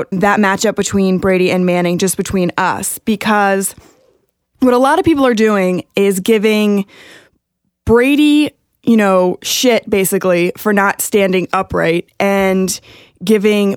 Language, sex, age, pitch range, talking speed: English, female, 20-39, 185-235 Hz, 130 wpm